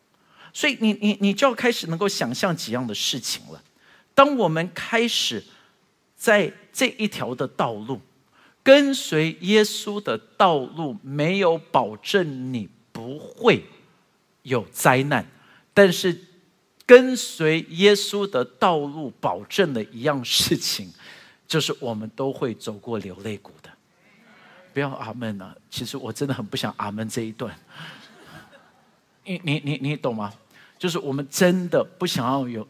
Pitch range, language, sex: 125-205 Hz, Chinese, male